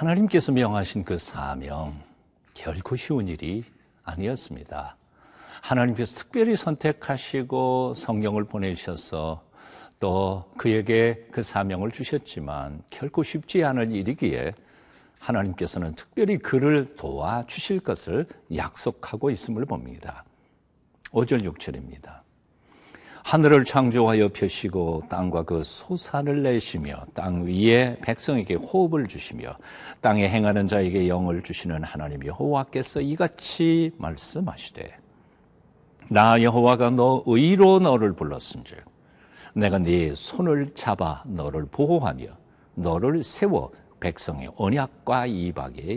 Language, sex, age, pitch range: Korean, male, 50-69, 90-135 Hz